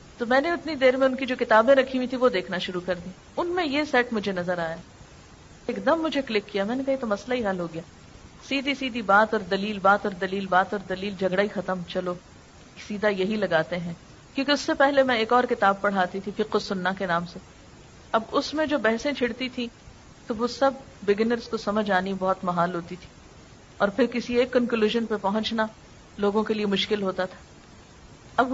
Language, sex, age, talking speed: Urdu, female, 40-59, 220 wpm